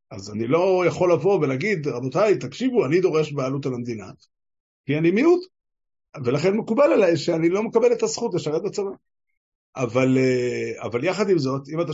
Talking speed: 165 wpm